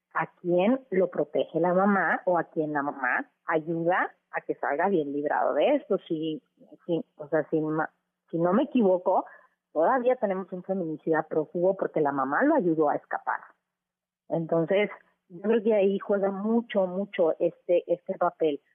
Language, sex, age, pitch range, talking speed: Spanish, female, 30-49, 165-210 Hz, 165 wpm